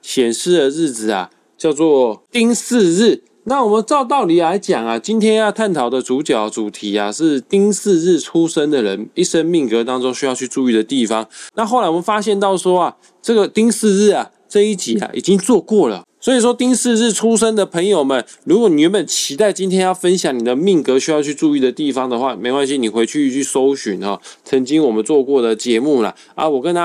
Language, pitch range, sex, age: Chinese, 130-205 Hz, male, 20-39